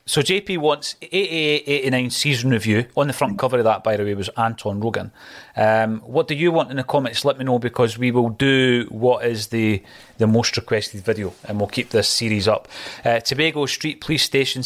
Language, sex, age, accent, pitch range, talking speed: English, male, 30-49, British, 110-130 Hz, 215 wpm